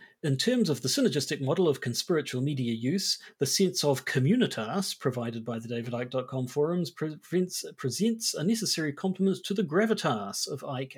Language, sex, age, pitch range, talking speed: English, male, 40-59, 125-175 Hz, 165 wpm